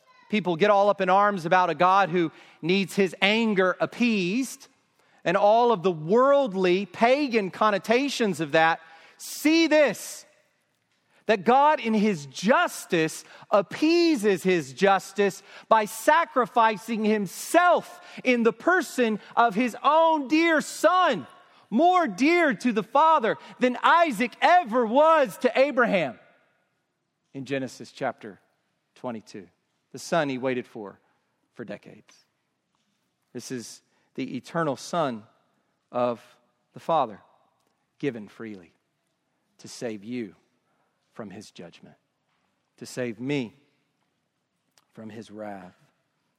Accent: American